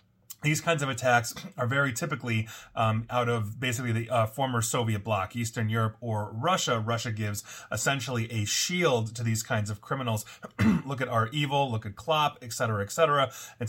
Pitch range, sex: 110-140 Hz, male